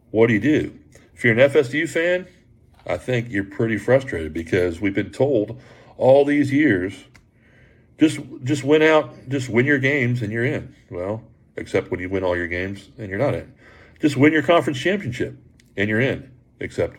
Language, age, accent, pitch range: English, 40-59, American, 100-130 Hz